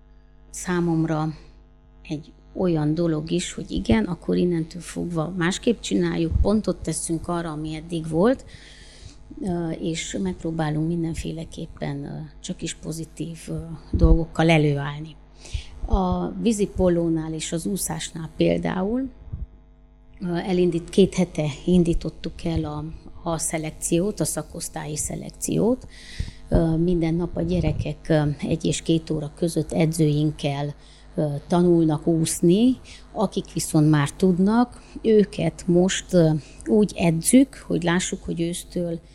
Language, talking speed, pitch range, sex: Hungarian, 105 wpm, 155-180 Hz, female